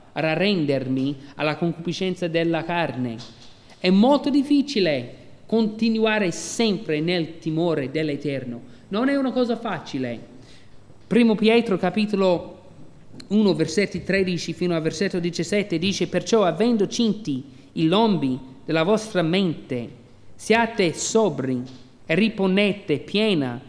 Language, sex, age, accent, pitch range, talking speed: Italian, male, 40-59, native, 145-200 Hz, 105 wpm